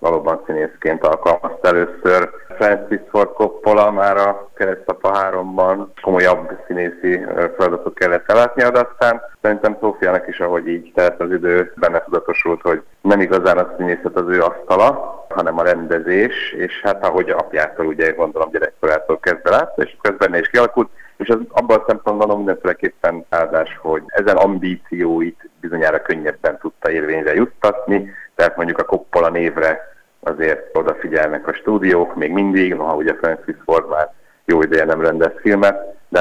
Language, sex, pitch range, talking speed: Hungarian, male, 85-120 Hz, 150 wpm